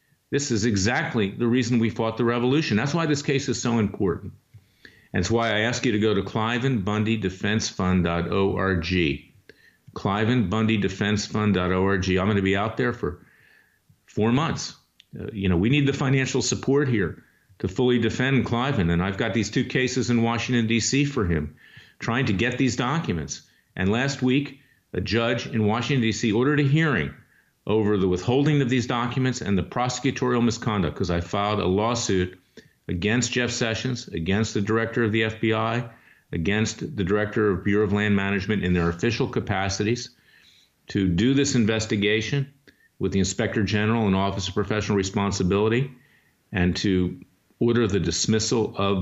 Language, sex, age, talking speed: English, male, 50-69, 160 wpm